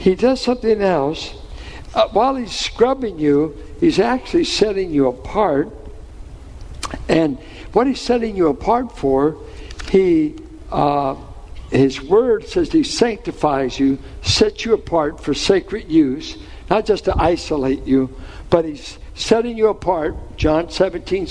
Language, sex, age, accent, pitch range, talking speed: English, male, 60-79, American, 145-240 Hz, 130 wpm